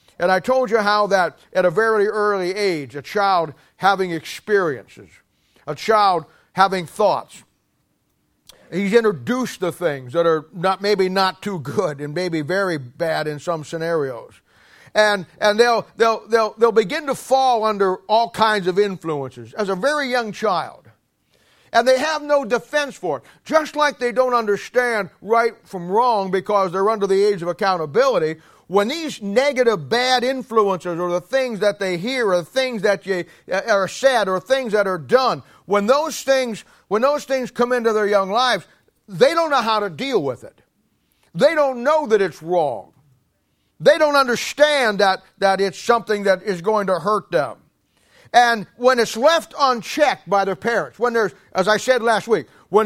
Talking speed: 175 wpm